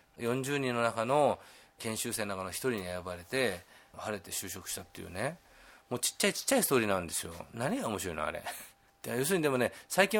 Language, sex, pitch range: Japanese, male, 100-145 Hz